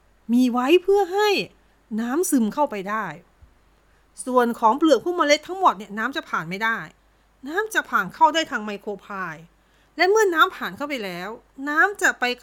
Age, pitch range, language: 30-49, 225-330 Hz, Thai